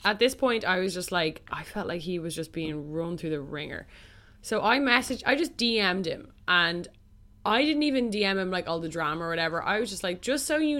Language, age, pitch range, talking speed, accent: English, 10-29, 170-220 Hz, 245 wpm, Irish